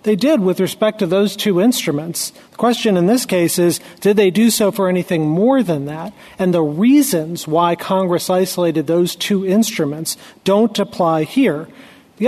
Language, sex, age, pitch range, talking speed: English, male, 40-59, 170-205 Hz, 175 wpm